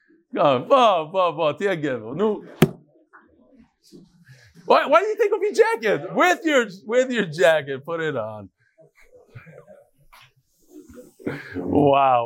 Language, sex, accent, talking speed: English, male, American, 105 wpm